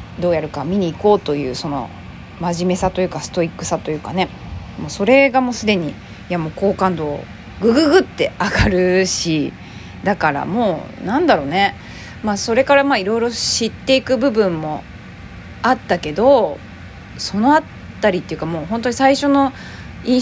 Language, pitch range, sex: Japanese, 155-220 Hz, female